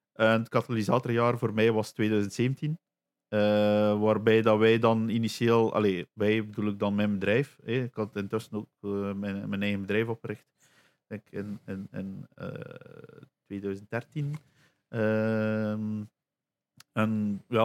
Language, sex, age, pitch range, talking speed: Dutch, male, 50-69, 105-120 Hz, 130 wpm